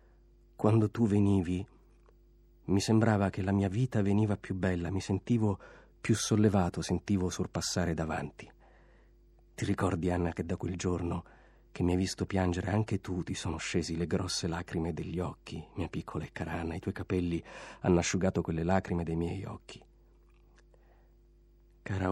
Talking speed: 155 wpm